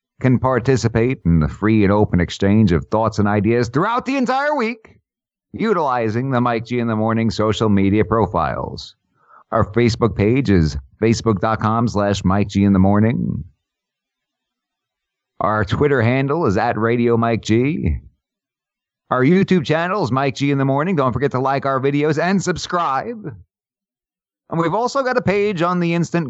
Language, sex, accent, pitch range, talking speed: English, male, American, 105-140 Hz, 160 wpm